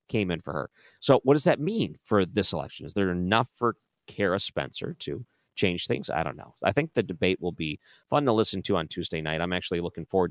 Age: 40-59